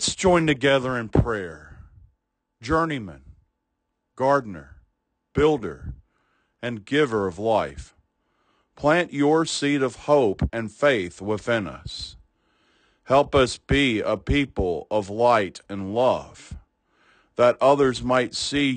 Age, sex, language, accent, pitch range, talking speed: 50-69, male, English, American, 105-145 Hz, 110 wpm